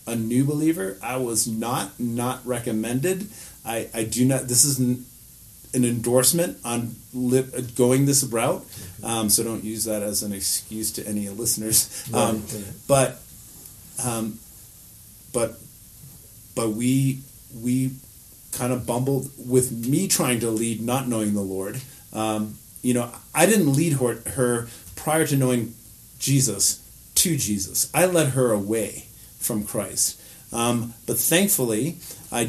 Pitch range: 110-130 Hz